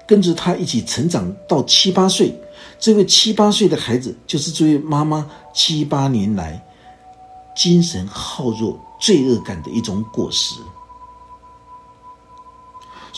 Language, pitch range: Chinese, 115-180 Hz